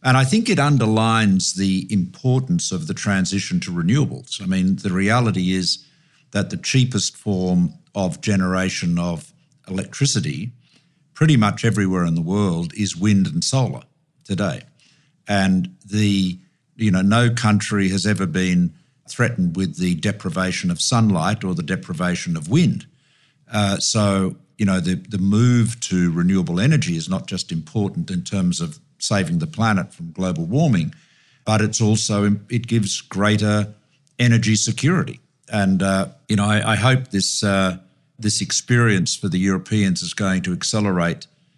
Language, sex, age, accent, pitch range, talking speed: English, male, 50-69, Australian, 95-150 Hz, 150 wpm